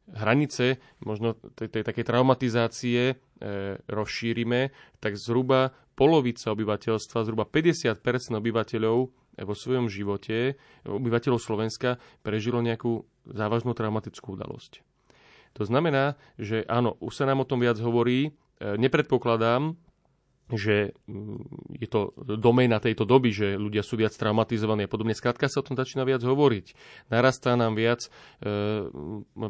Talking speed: 125 wpm